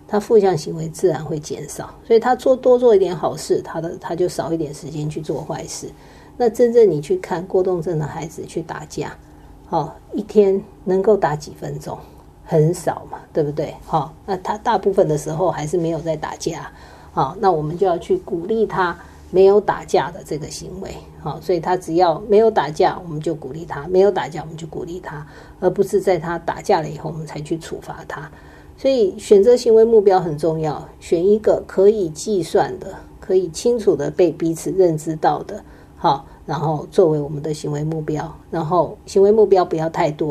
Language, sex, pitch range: Chinese, female, 160-205 Hz